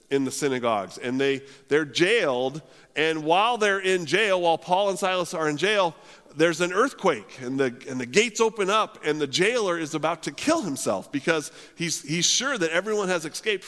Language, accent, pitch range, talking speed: English, American, 135-185 Hz, 195 wpm